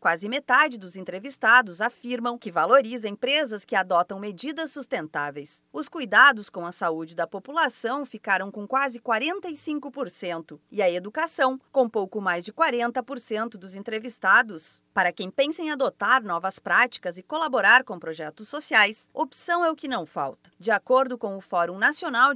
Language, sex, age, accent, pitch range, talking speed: Portuguese, female, 30-49, Brazilian, 195-285 Hz, 155 wpm